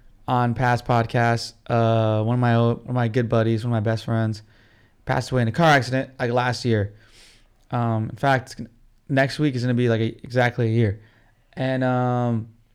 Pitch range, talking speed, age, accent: 115-135 Hz, 185 wpm, 20-39, American